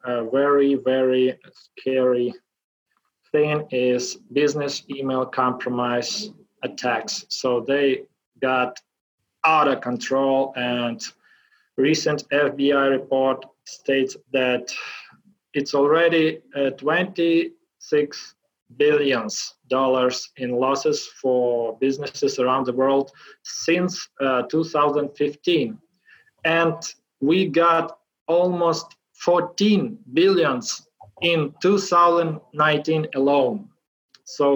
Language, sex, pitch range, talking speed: English, male, 135-170 Hz, 80 wpm